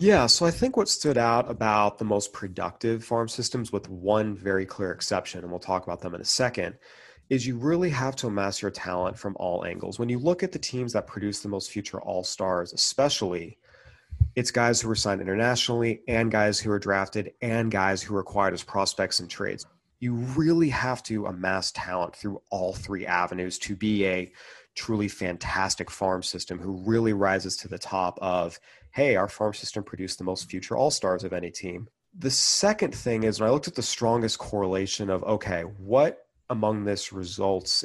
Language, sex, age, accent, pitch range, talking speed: English, male, 30-49, American, 95-120 Hz, 195 wpm